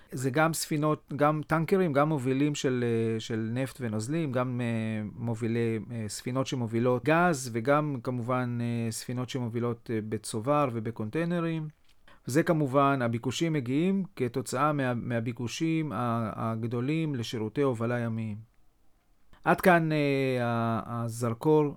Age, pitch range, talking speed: 40-59, 120-155 Hz, 100 wpm